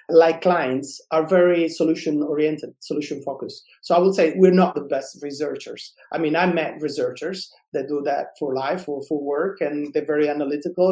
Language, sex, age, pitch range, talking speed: English, male, 30-49, 155-185 Hz, 175 wpm